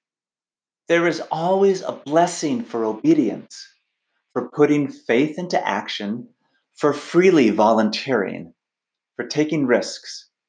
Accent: American